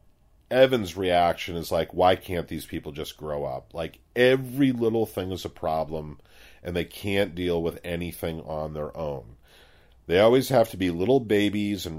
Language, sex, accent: English, male, American